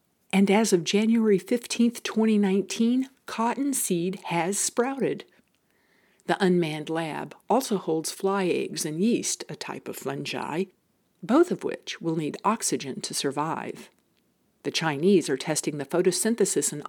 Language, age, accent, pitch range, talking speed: English, 50-69, American, 150-210 Hz, 135 wpm